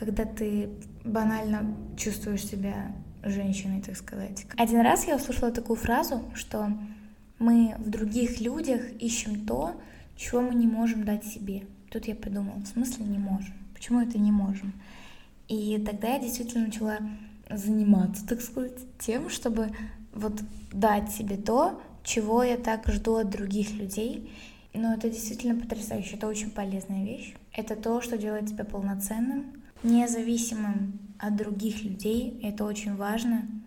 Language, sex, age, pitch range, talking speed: Russian, female, 10-29, 205-230 Hz, 145 wpm